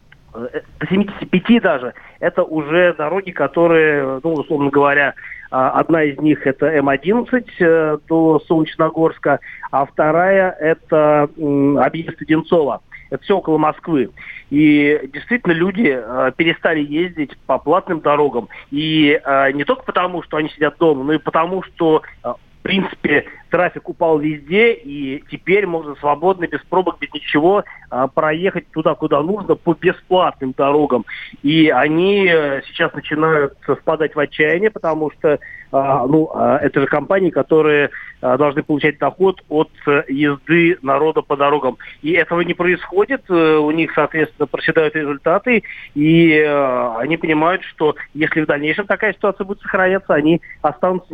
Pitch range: 145-175 Hz